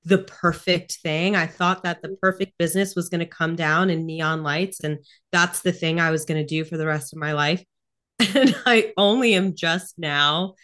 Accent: American